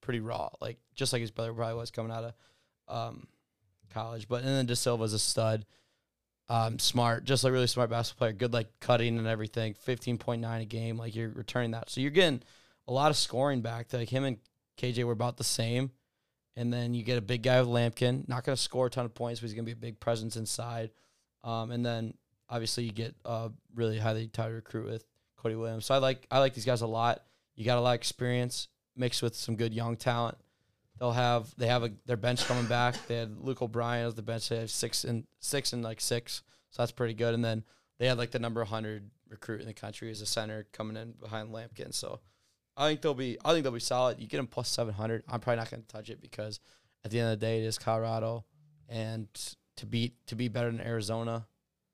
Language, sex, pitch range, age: English, male, 115-125 Hz, 20-39